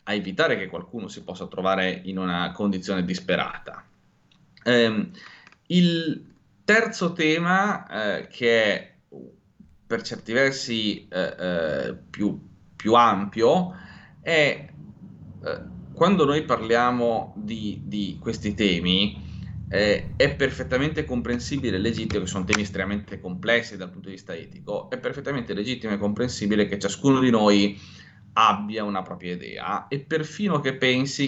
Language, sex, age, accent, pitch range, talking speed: Italian, male, 30-49, native, 100-130 Hz, 130 wpm